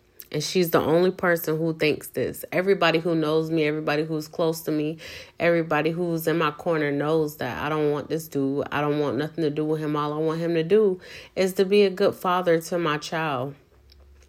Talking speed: 220 wpm